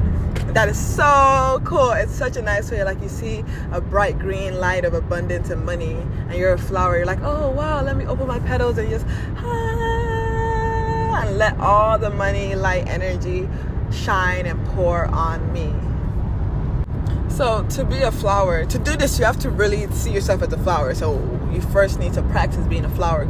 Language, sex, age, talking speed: English, female, 20-39, 190 wpm